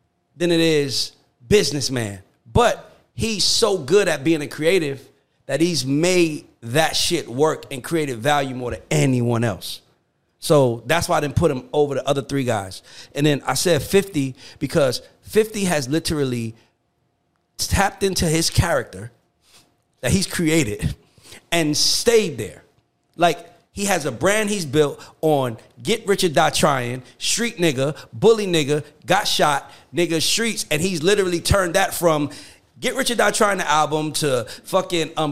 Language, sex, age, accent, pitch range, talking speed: English, male, 40-59, American, 135-185 Hz, 155 wpm